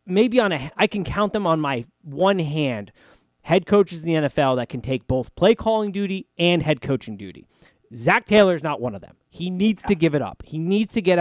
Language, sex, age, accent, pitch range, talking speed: English, male, 30-49, American, 130-190 Hz, 235 wpm